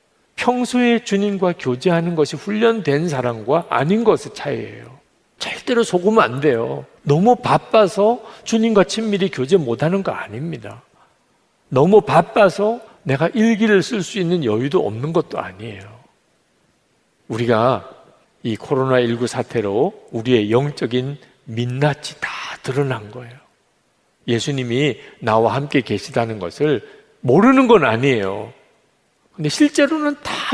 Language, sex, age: Korean, male, 50-69